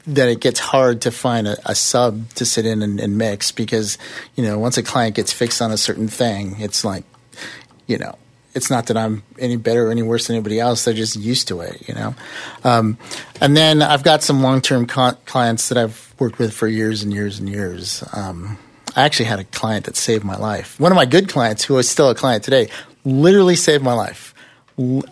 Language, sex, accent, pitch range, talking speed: English, male, American, 110-140 Hz, 230 wpm